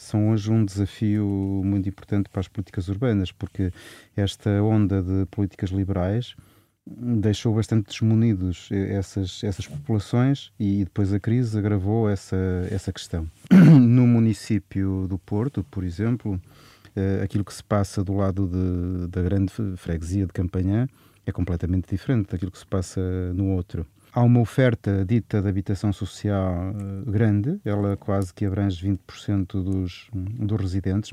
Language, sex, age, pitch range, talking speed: Portuguese, male, 30-49, 95-115 Hz, 140 wpm